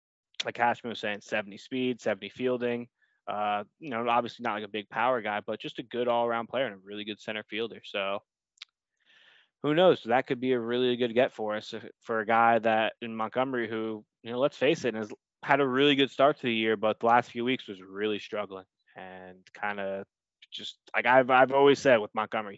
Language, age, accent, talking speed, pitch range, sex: English, 20-39, American, 220 wpm, 105-125 Hz, male